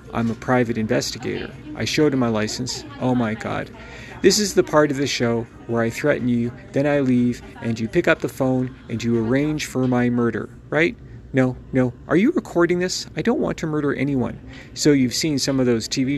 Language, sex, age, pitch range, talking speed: English, male, 40-59, 120-140 Hz, 215 wpm